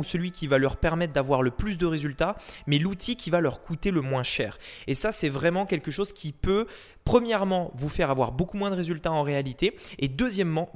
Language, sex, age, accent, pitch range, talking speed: French, male, 20-39, French, 140-190 Hz, 225 wpm